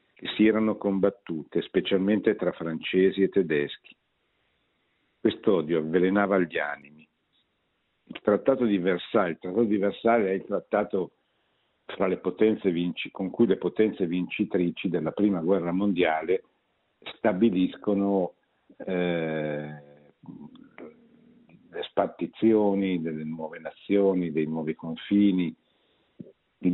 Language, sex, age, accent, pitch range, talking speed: Italian, male, 50-69, native, 85-105 Hz, 105 wpm